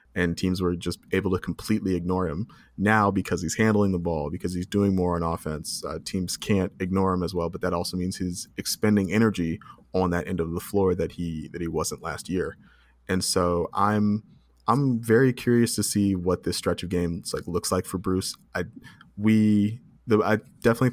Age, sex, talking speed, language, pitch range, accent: 20-39, male, 200 wpm, English, 90-105 Hz, American